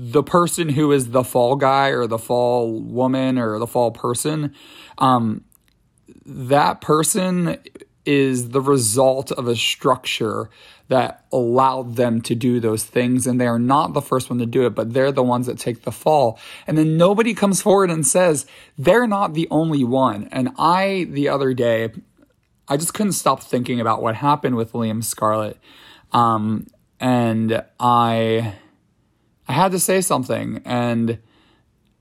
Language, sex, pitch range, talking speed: English, male, 115-145 Hz, 160 wpm